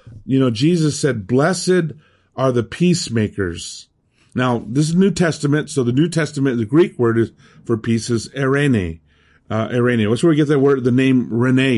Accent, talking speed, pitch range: American, 180 wpm, 105-135 Hz